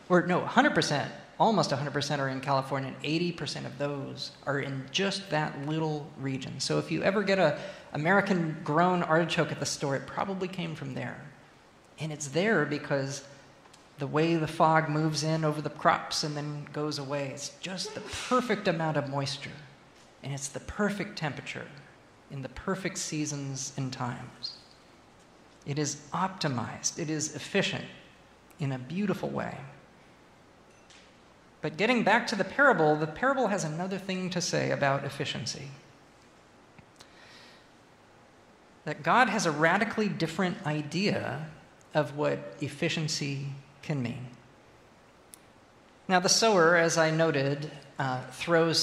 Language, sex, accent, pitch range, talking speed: English, male, American, 140-175 Hz, 140 wpm